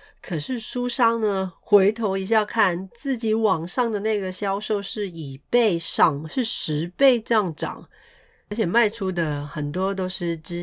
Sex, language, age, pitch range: female, Chinese, 30-49, 150-195 Hz